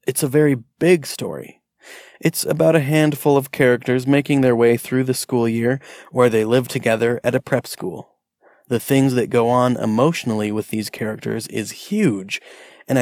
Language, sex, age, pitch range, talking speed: English, male, 30-49, 115-140 Hz, 175 wpm